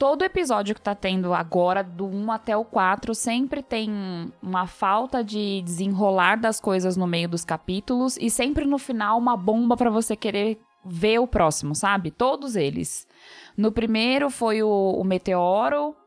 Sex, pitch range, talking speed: female, 190-250 Hz, 165 wpm